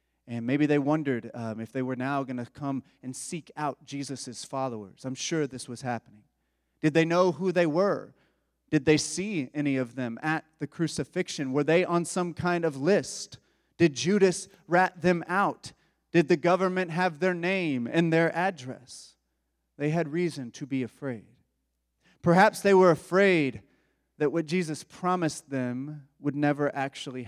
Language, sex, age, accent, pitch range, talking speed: English, male, 30-49, American, 130-170 Hz, 165 wpm